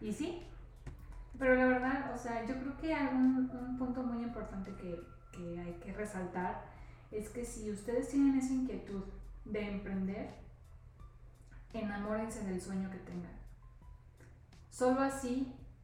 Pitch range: 185-230 Hz